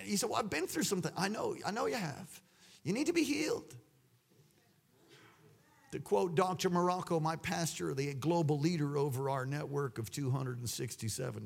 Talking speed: 170 wpm